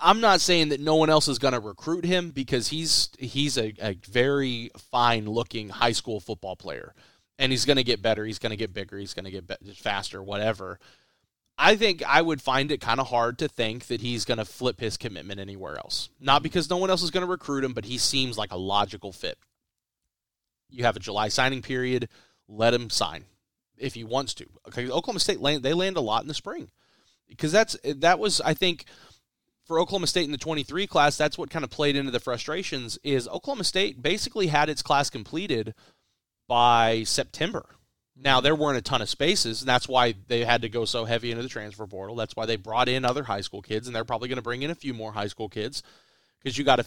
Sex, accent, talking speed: male, American, 230 wpm